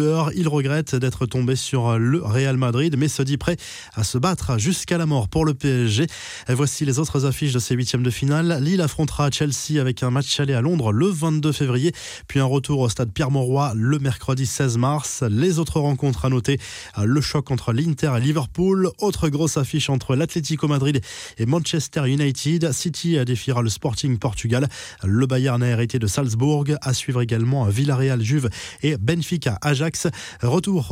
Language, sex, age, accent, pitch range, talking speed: French, male, 20-39, French, 125-150 Hz, 180 wpm